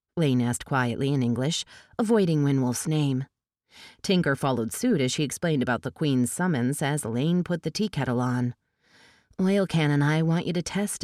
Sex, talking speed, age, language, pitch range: female, 175 wpm, 30-49, English, 130-190 Hz